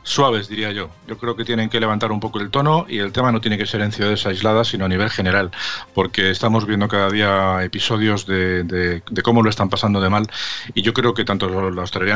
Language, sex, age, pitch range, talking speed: Spanish, male, 40-59, 95-115 Hz, 240 wpm